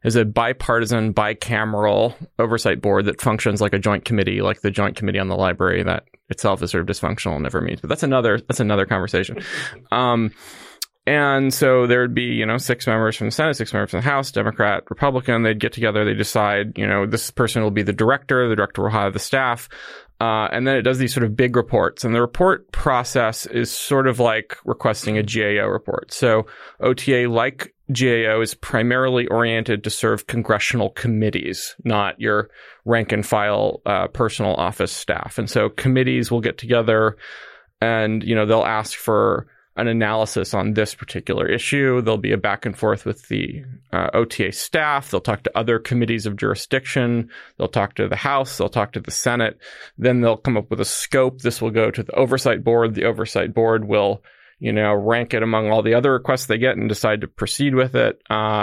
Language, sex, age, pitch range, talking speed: English, male, 20-39, 105-125 Hz, 200 wpm